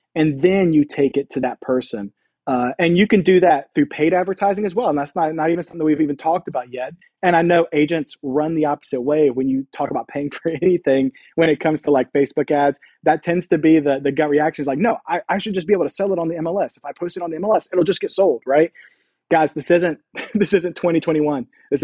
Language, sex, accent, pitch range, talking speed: English, male, American, 140-165 Hz, 260 wpm